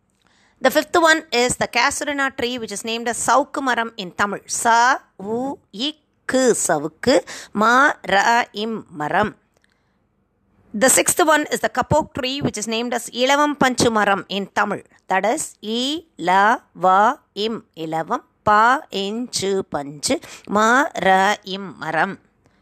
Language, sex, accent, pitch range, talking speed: Tamil, female, native, 195-260 Hz, 85 wpm